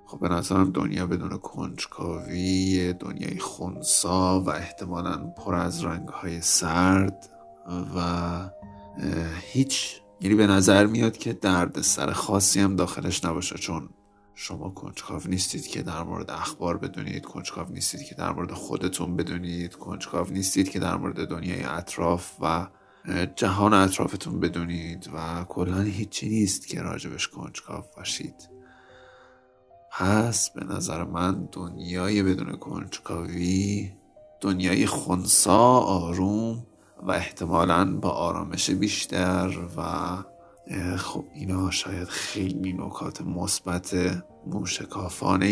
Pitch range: 90-100 Hz